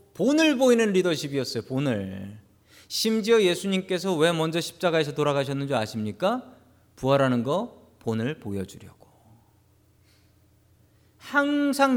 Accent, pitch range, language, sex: native, 115-190 Hz, Korean, male